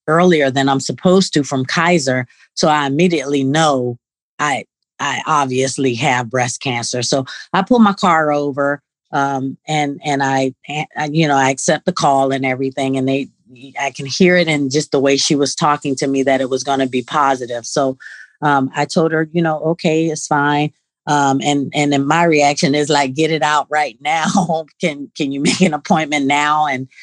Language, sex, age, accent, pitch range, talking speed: English, female, 30-49, American, 135-155 Hz, 200 wpm